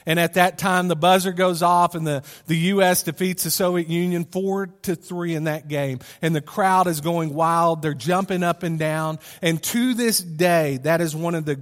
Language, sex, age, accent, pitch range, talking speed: English, male, 40-59, American, 155-185 Hz, 215 wpm